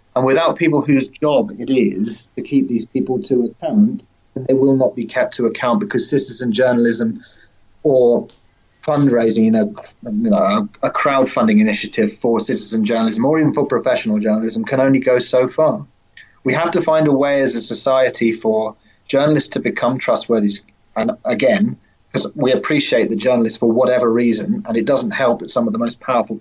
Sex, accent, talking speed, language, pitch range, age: male, British, 175 wpm, English, 115-155 Hz, 30-49